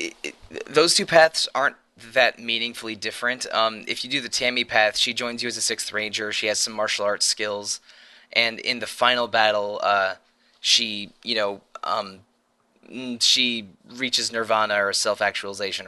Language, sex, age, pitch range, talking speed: English, male, 20-39, 100-120 Hz, 170 wpm